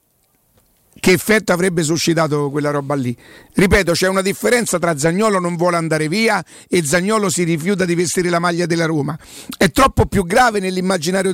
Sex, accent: male, native